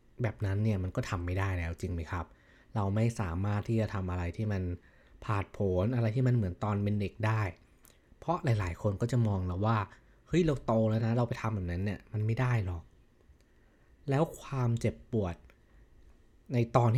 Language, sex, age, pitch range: Thai, male, 20-39, 95-120 Hz